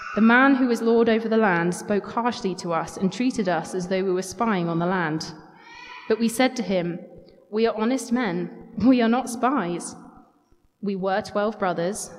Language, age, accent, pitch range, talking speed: English, 20-39, British, 180-225 Hz, 195 wpm